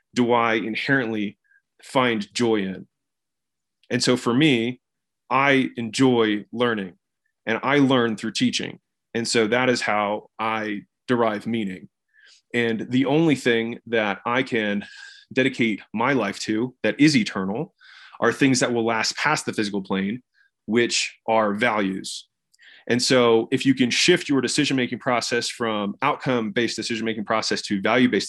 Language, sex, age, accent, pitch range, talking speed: English, male, 30-49, American, 110-130 Hz, 140 wpm